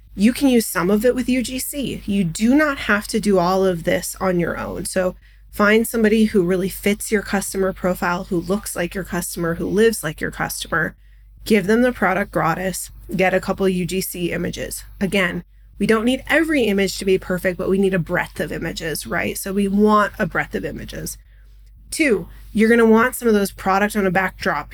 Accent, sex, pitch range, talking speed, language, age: American, female, 185-225 Hz, 205 wpm, English, 20-39